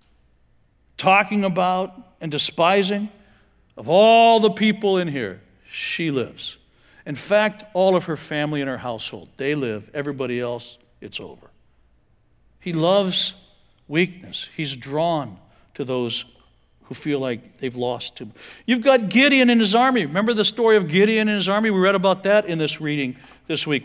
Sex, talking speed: male, 160 wpm